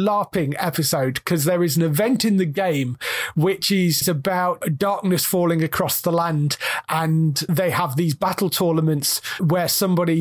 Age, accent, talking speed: 30-49, British, 155 wpm